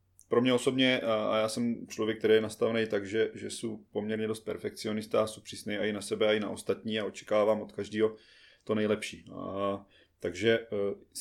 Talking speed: 175 wpm